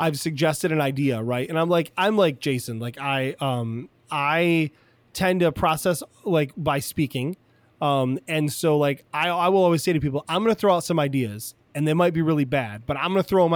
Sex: male